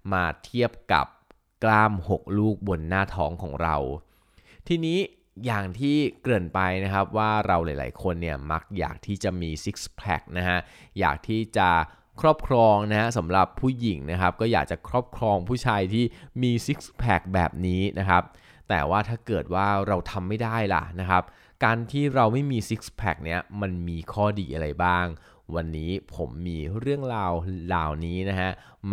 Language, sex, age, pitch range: Thai, male, 20-39, 85-110 Hz